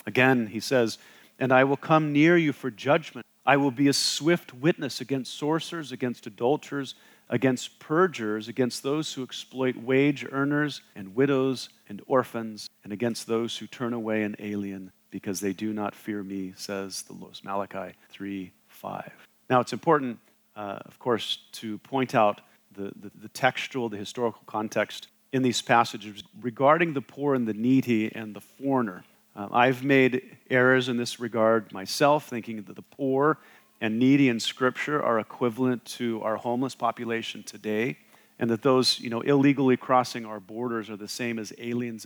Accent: American